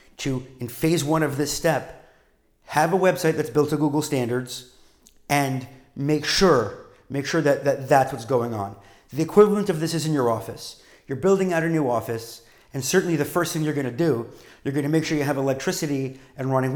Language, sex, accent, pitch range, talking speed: English, male, American, 125-155 Hz, 205 wpm